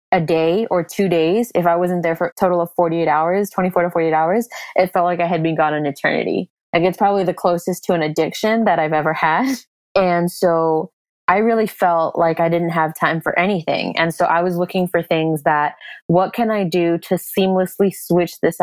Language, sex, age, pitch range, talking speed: English, female, 20-39, 160-185 Hz, 220 wpm